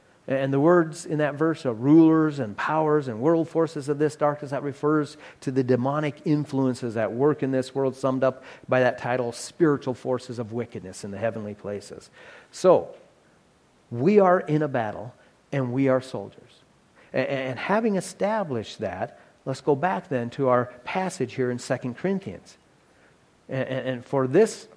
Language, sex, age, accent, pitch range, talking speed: English, male, 40-59, American, 130-175 Hz, 170 wpm